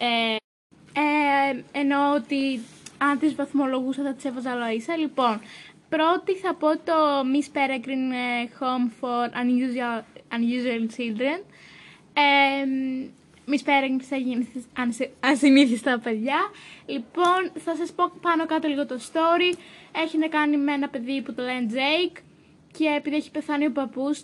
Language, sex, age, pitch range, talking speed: Greek, female, 20-39, 250-300 Hz, 125 wpm